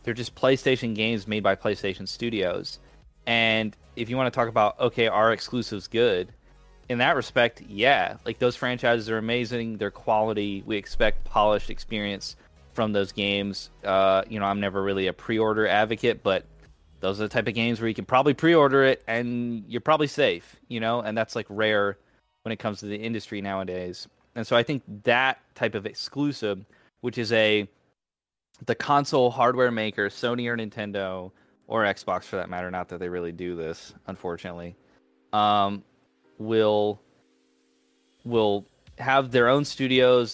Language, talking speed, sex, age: English, 165 wpm, male, 20-39